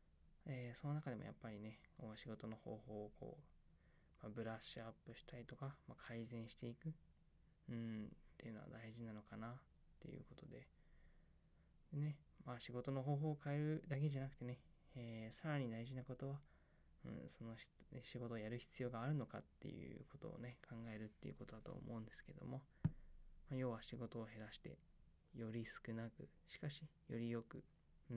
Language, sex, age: Japanese, male, 20-39